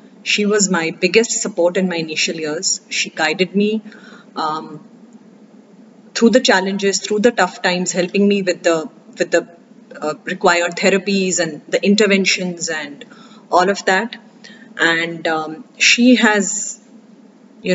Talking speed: 140 wpm